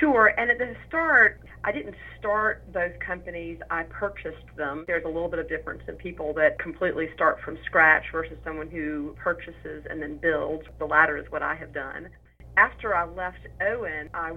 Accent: American